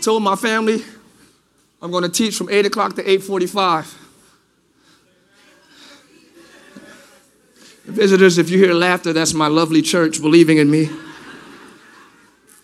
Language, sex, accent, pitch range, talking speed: English, male, American, 170-235 Hz, 120 wpm